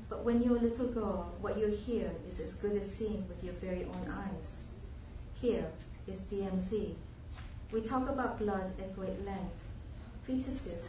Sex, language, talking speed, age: female, English, 165 wpm, 40-59